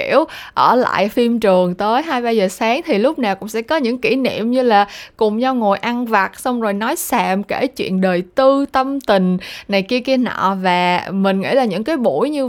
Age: 20-39